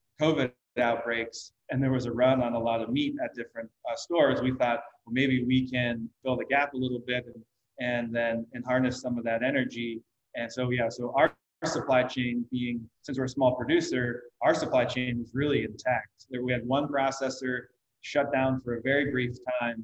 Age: 20-39